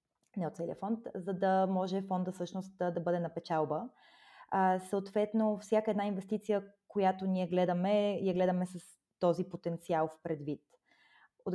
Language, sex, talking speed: Bulgarian, female, 140 wpm